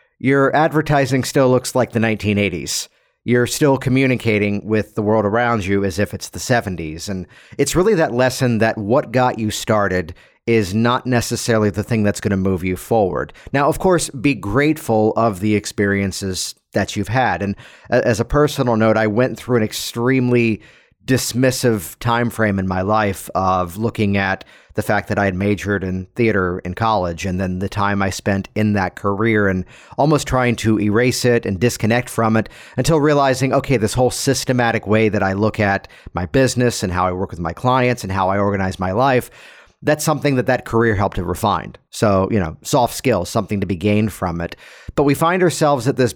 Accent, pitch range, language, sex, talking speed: American, 100-125 Hz, English, male, 195 wpm